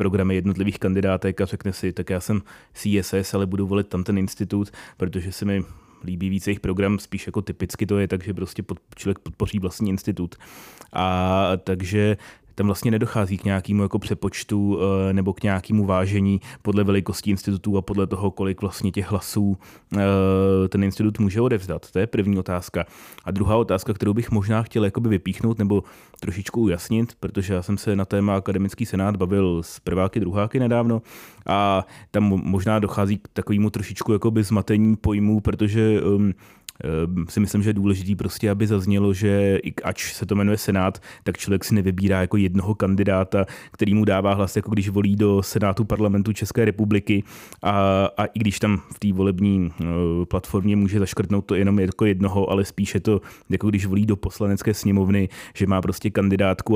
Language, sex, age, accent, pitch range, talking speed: Czech, male, 30-49, native, 95-105 Hz, 170 wpm